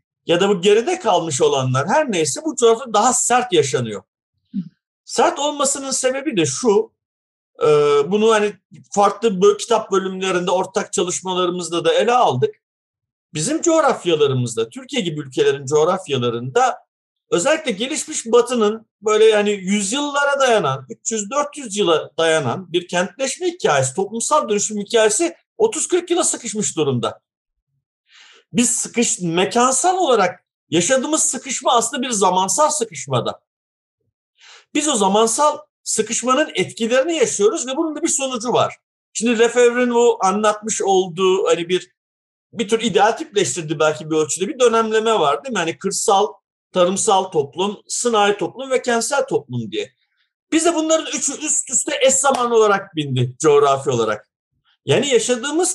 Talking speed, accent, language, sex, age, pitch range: 130 wpm, native, Turkish, male, 50-69, 185-285 Hz